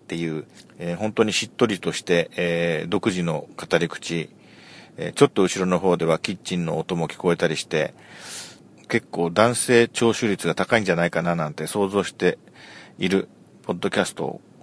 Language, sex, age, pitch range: Japanese, male, 40-59, 85-115 Hz